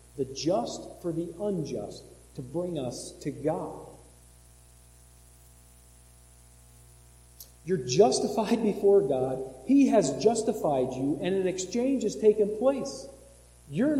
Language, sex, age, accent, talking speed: English, male, 50-69, American, 105 wpm